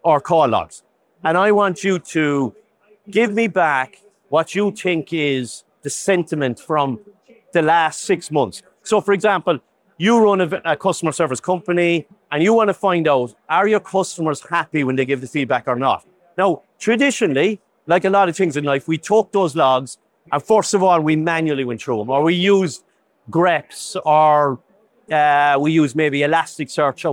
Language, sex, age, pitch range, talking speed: English, male, 40-59, 150-195 Hz, 175 wpm